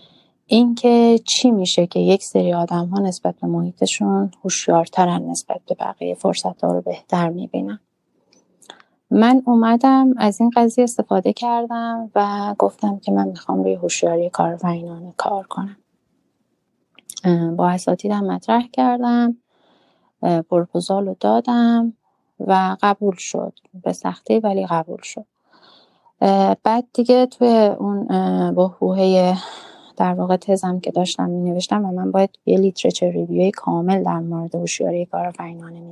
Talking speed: 135 wpm